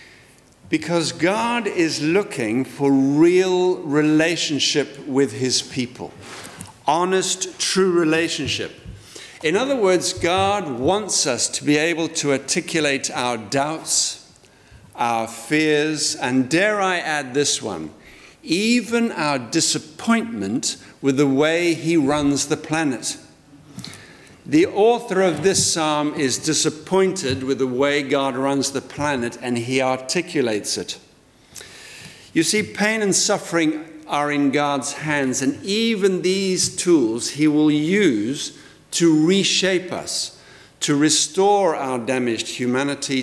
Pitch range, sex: 135-180 Hz, male